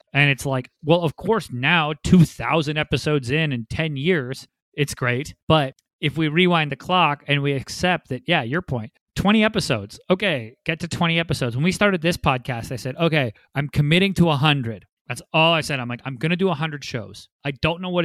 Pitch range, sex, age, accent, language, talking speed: 130-160 Hz, male, 30-49, American, English, 210 wpm